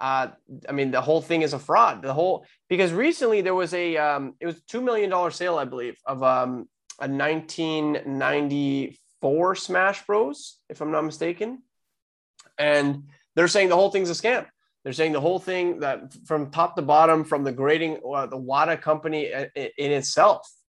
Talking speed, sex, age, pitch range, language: 175 wpm, male, 20-39, 140-195 Hz, English